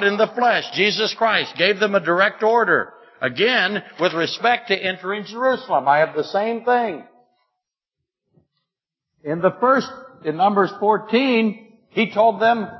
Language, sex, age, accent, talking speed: English, male, 60-79, American, 140 wpm